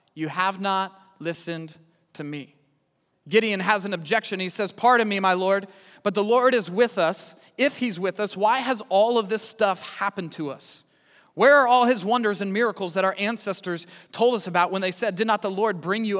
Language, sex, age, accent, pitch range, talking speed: English, male, 30-49, American, 180-215 Hz, 210 wpm